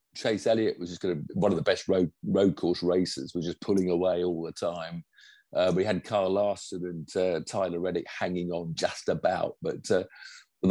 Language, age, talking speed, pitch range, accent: English, 50-69, 200 wpm, 90-140 Hz, British